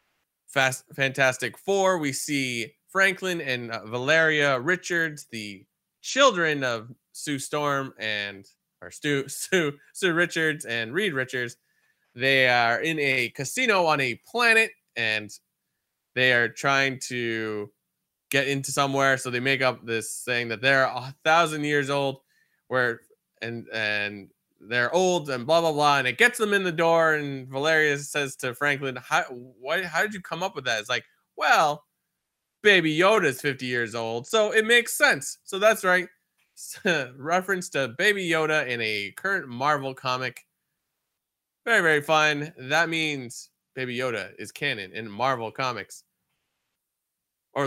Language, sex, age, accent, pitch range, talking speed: English, male, 20-39, American, 120-165 Hz, 145 wpm